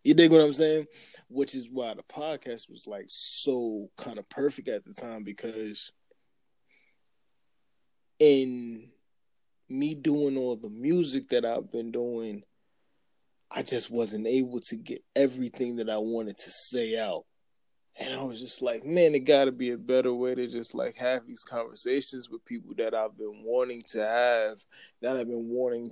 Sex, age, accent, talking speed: male, 20-39, American, 170 wpm